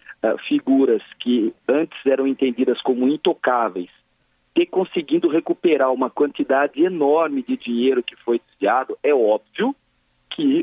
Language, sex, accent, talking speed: Portuguese, male, Brazilian, 125 wpm